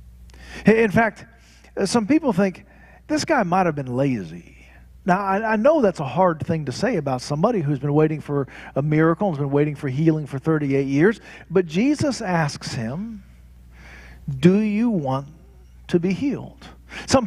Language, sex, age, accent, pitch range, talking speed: English, male, 40-59, American, 160-220 Hz, 165 wpm